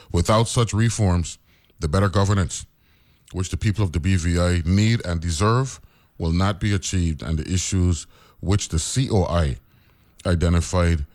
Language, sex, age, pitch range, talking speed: English, male, 30-49, 80-105 Hz, 140 wpm